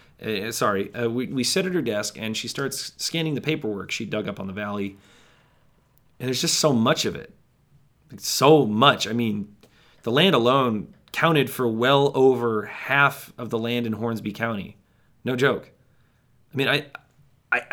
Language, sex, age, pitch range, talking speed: English, male, 30-49, 115-160 Hz, 175 wpm